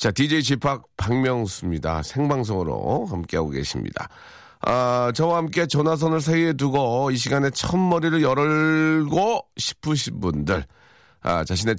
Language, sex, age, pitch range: Korean, male, 40-59, 110-160 Hz